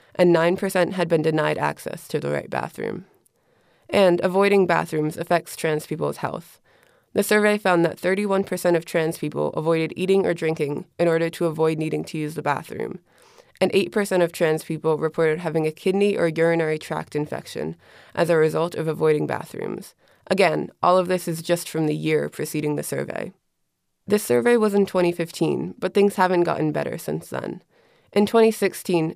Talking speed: 170 wpm